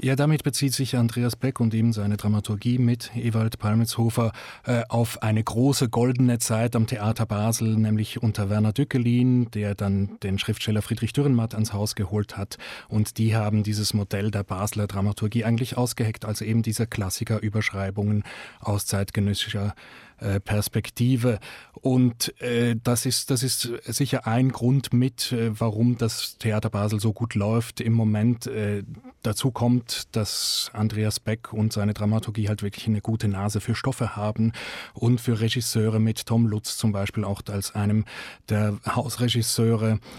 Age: 30-49